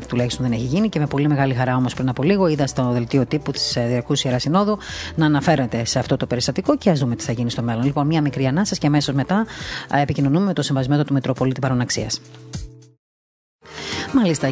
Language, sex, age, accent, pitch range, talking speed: Greek, female, 30-49, native, 135-165 Hz, 205 wpm